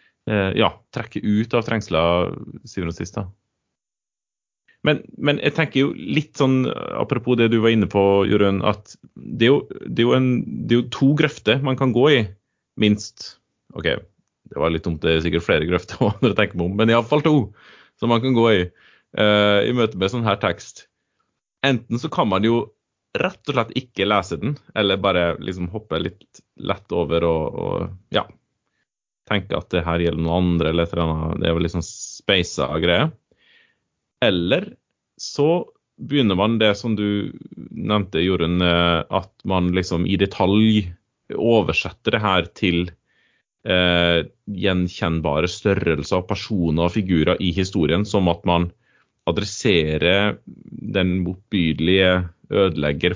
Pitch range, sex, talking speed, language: 85-110 Hz, male, 155 wpm, English